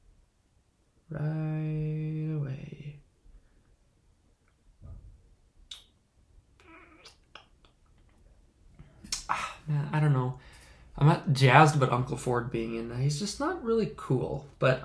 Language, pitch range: English, 115-155 Hz